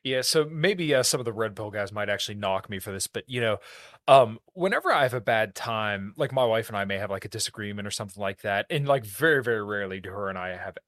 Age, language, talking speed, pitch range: 20-39, English, 275 wpm, 100-130 Hz